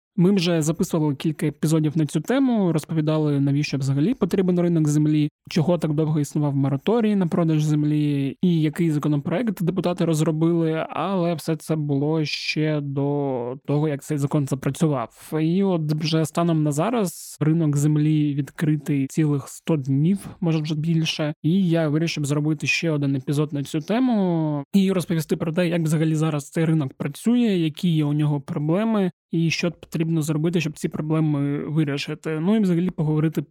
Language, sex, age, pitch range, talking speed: Ukrainian, male, 20-39, 145-170 Hz, 160 wpm